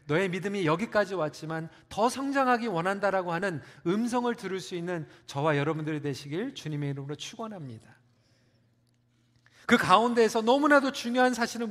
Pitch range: 145-230 Hz